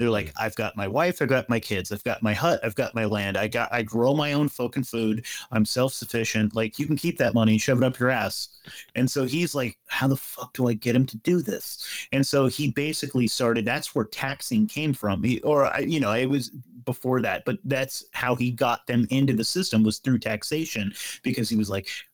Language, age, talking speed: English, 30-49, 245 wpm